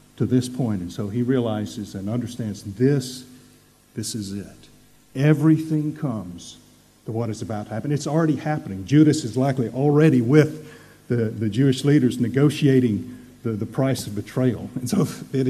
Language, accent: English, American